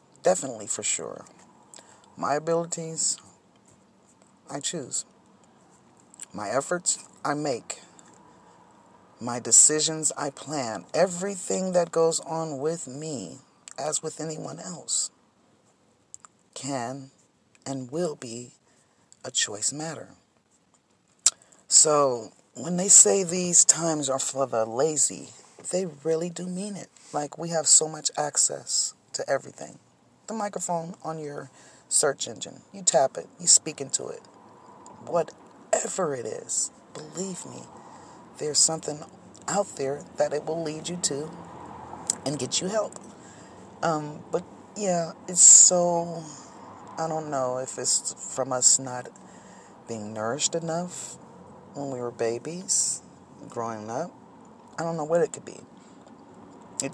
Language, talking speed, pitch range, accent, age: English, 120 wpm, 135-175 Hz, American, 40-59